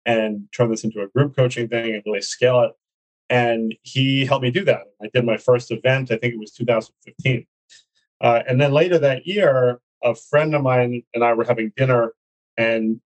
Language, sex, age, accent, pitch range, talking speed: English, male, 30-49, American, 110-125 Hz, 200 wpm